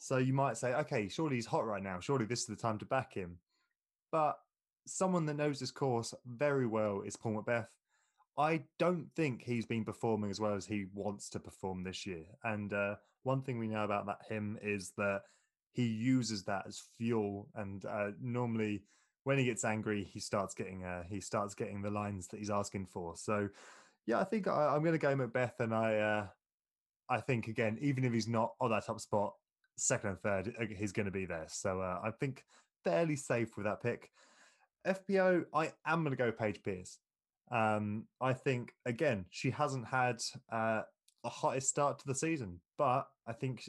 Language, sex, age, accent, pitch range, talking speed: English, male, 20-39, British, 100-130 Hz, 200 wpm